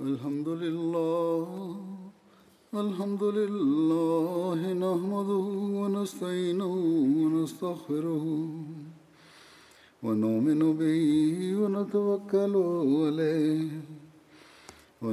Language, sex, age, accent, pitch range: Tamil, male, 50-69, native, 155-200 Hz